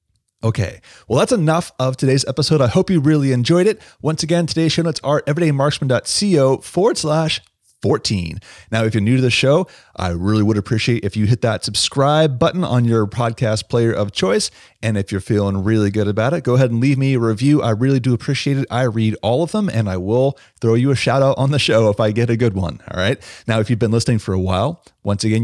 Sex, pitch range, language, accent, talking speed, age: male, 105-140 Hz, English, American, 235 wpm, 30-49